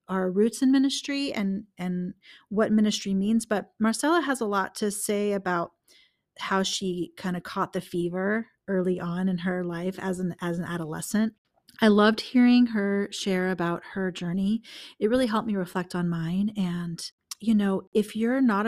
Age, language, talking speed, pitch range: 30-49, English, 175 wpm, 185-220 Hz